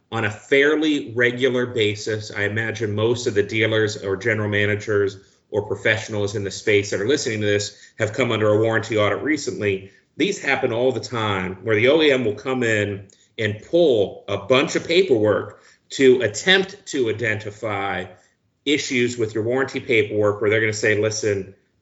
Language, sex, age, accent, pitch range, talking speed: English, male, 30-49, American, 105-130 Hz, 175 wpm